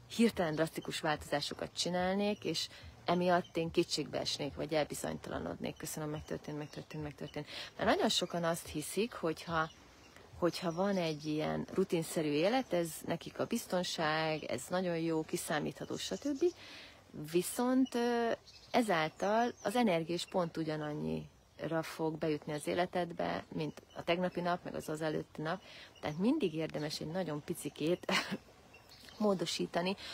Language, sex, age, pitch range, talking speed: Hungarian, female, 30-49, 155-195 Hz, 120 wpm